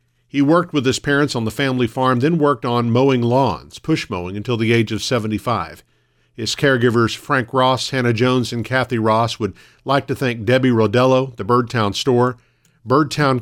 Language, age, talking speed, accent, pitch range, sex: English, 50-69, 180 wpm, American, 110-130 Hz, male